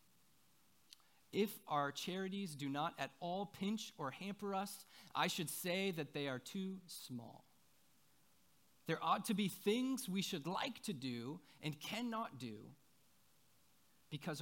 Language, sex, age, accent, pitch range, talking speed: English, male, 30-49, American, 125-180 Hz, 135 wpm